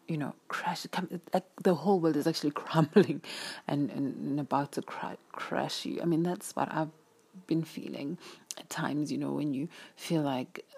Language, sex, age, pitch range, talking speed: English, female, 30-49, 170-200 Hz, 175 wpm